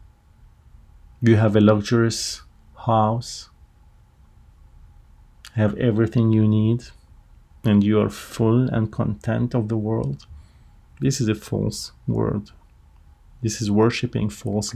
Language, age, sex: English, 40-59, male